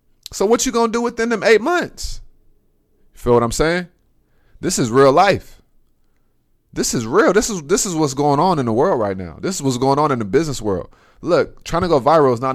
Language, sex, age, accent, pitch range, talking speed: English, male, 20-39, American, 115-150 Hz, 235 wpm